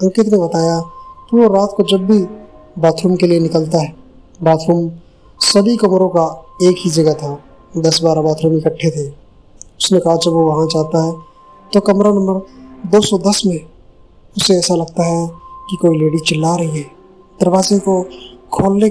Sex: male